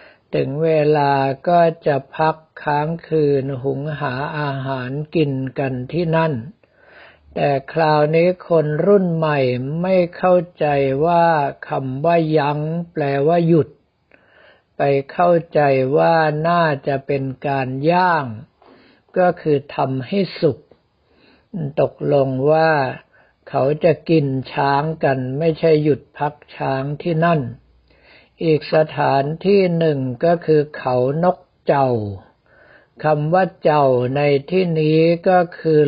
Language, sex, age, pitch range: Thai, male, 60-79, 135-165 Hz